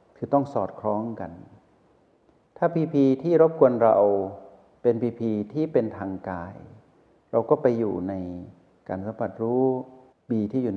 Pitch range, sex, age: 95-120 Hz, male, 60-79